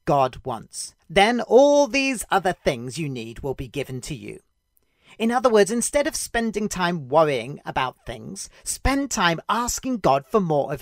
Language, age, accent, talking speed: English, 40-59, British, 170 wpm